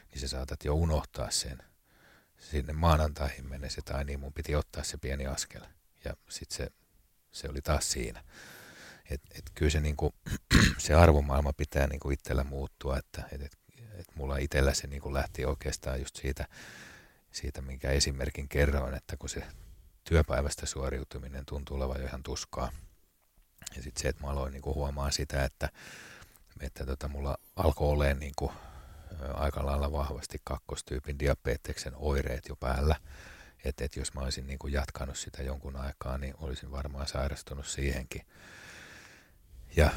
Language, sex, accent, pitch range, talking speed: Finnish, male, native, 70-75 Hz, 150 wpm